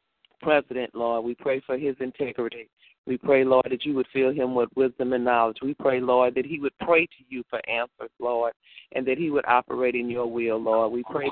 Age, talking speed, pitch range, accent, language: 40-59, 225 wpm, 120-140 Hz, American, English